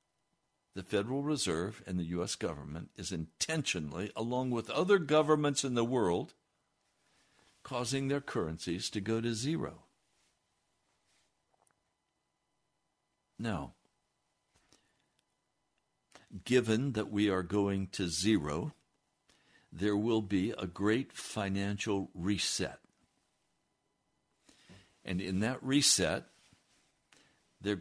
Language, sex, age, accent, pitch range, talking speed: English, male, 60-79, American, 95-120 Hz, 95 wpm